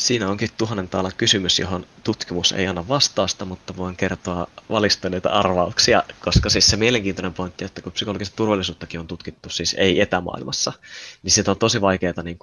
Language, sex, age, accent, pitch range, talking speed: Finnish, male, 20-39, native, 85-100 Hz, 165 wpm